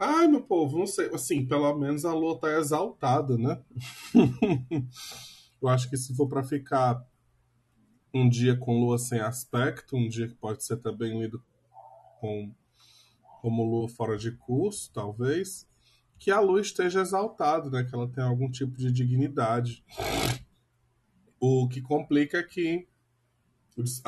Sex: male